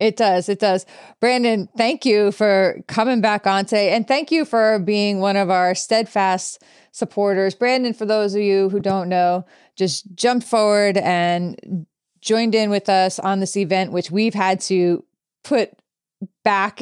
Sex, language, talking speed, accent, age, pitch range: female, English, 170 wpm, American, 30-49, 180-210 Hz